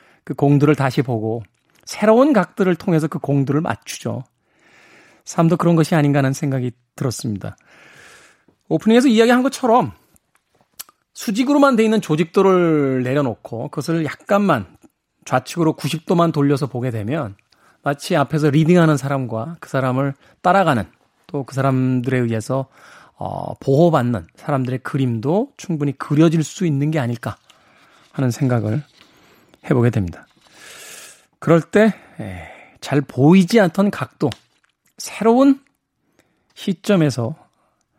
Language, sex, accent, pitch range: Korean, male, native, 130-180 Hz